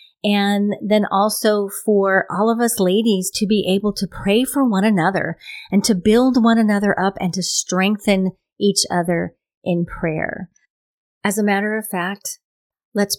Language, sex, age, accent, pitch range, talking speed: English, female, 40-59, American, 170-205 Hz, 160 wpm